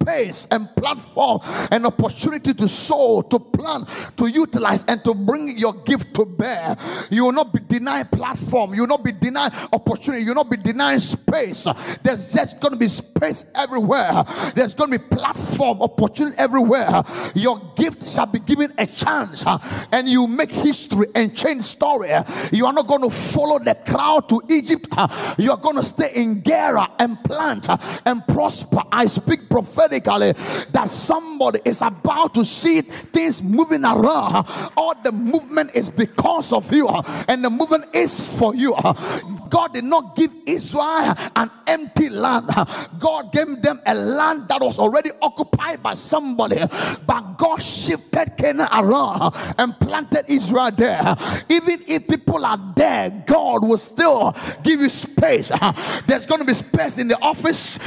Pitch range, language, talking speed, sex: 235-315 Hz, English, 165 wpm, male